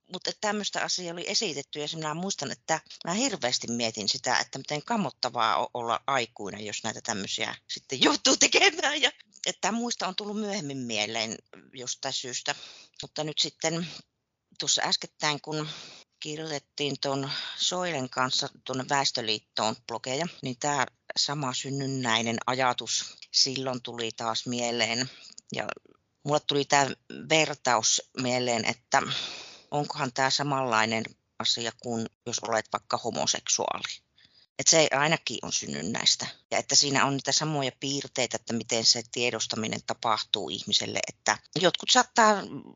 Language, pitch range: Finnish, 120-150 Hz